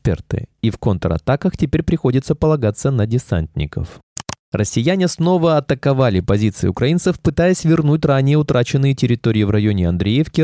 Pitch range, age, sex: 105-145 Hz, 20-39, male